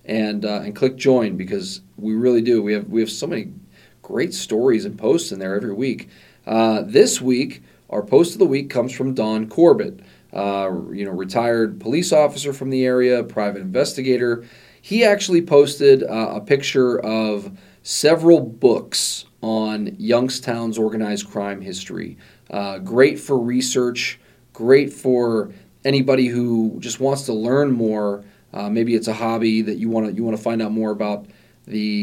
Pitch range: 105-130 Hz